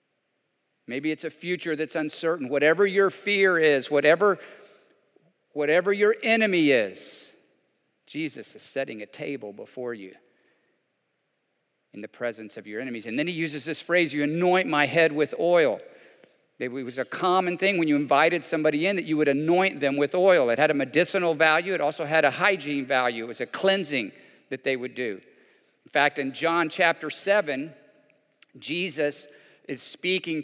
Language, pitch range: English, 145-195 Hz